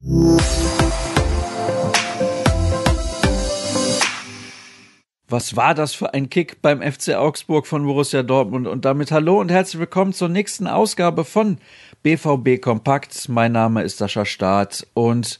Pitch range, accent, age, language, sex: 115-150 Hz, German, 50-69, German, male